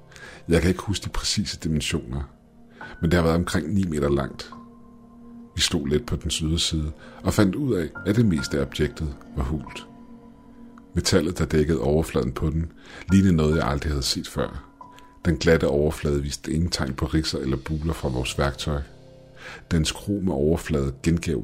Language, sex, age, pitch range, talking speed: Danish, male, 50-69, 75-100 Hz, 175 wpm